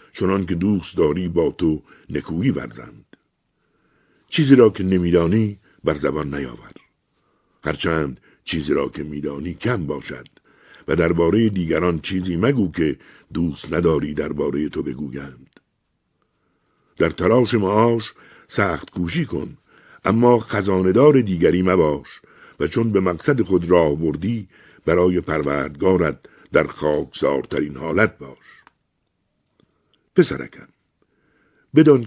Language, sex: Persian, male